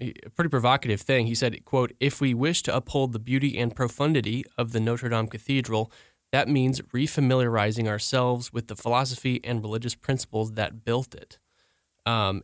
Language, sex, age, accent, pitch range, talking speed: English, male, 20-39, American, 110-130 Hz, 170 wpm